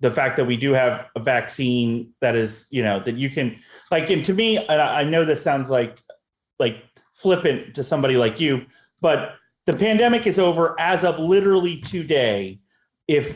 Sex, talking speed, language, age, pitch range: male, 185 wpm, English, 30-49, 125-165 Hz